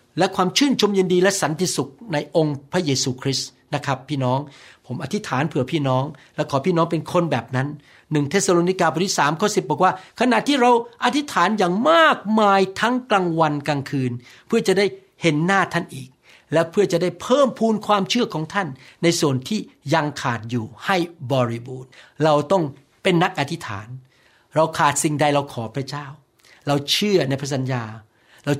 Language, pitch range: Thai, 135-185 Hz